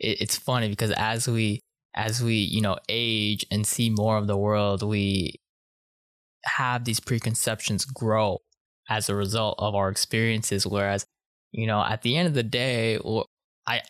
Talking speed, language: 160 wpm, English